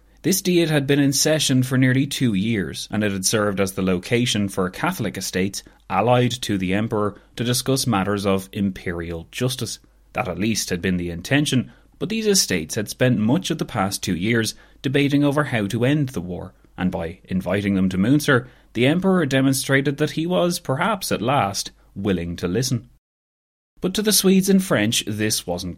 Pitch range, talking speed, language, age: 95-130 Hz, 190 wpm, English, 30-49